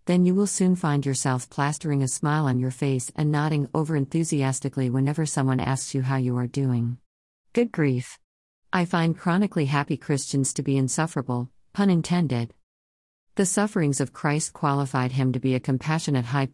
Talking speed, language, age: 170 wpm, English, 50-69